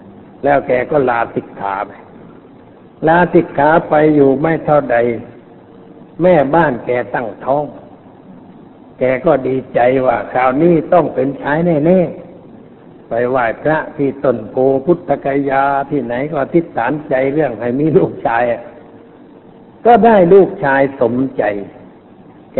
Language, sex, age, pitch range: Thai, male, 60-79, 125-150 Hz